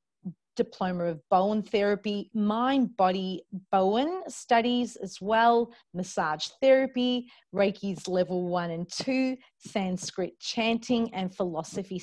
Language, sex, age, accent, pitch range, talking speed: English, female, 30-49, Australian, 185-230 Hz, 105 wpm